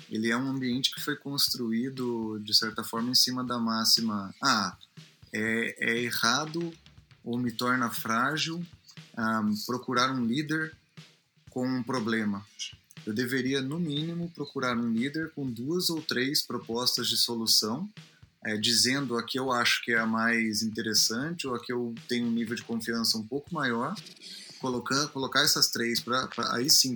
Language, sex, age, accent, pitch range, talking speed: Portuguese, male, 20-39, Brazilian, 120-155 Hz, 160 wpm